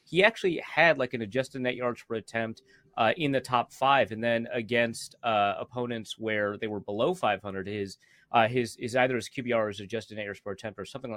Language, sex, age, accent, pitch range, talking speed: English, male, 30-49, American, 110-135 Hz, 210 wpm